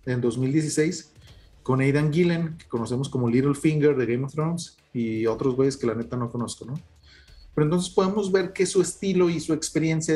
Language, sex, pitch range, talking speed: Spanish, male, 125-165 Hz, 195 wpm